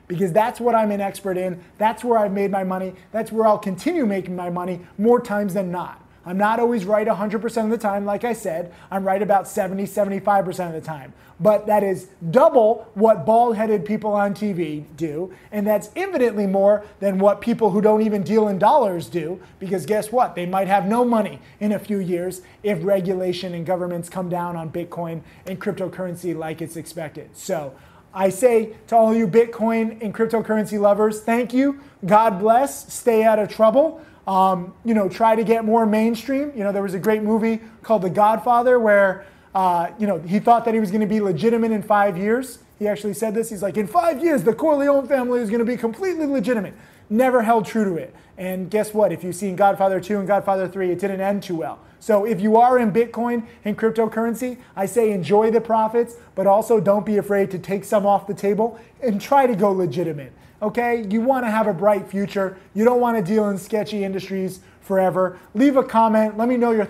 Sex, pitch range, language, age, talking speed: male, 190-225 Hz, English, 20-39, 210 wpm